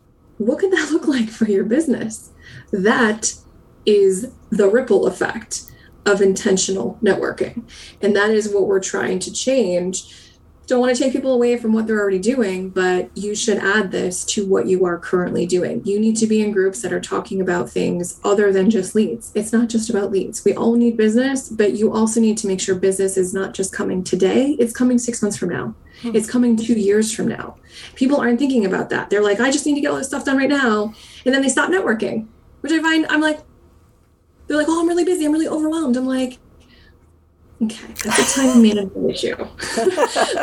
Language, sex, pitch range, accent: English, female, 200-255 Hz, American